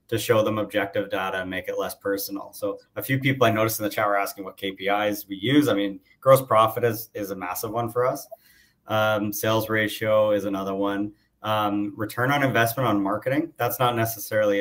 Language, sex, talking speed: English, male, 210 wpm